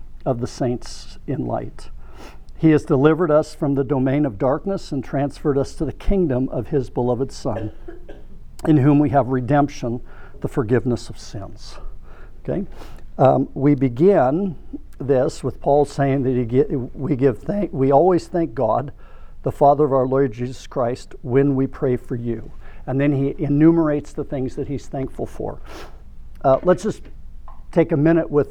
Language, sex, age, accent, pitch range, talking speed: English, male, 60-79, American, 125-150 Hz, 160 wpm